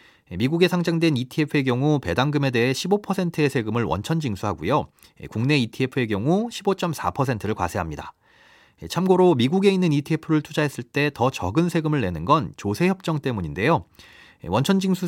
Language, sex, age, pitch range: Korean, male, 40-59, 110-160 Hz